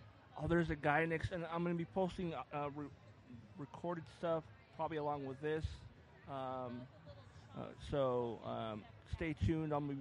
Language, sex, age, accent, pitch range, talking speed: English, male, 30-49, American, 115-145 Hz, 170 wpm